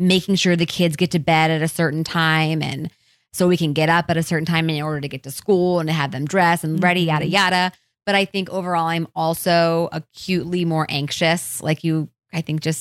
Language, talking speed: English, 235 wpm